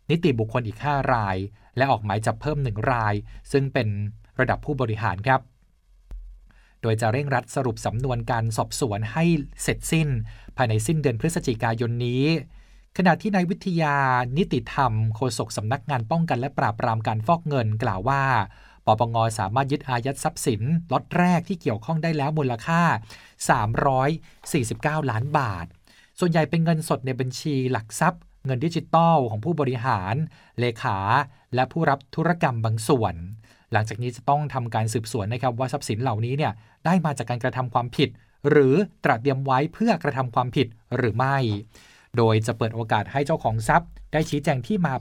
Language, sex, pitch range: Thai, male, 115-150 Hz